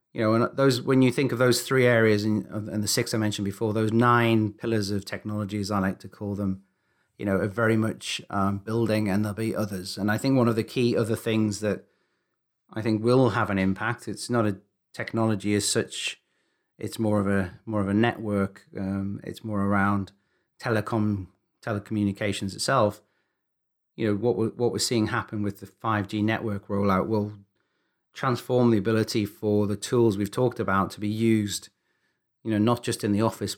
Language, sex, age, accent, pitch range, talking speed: English, male, 30-49, British, 100-115 Hz, 195 wpm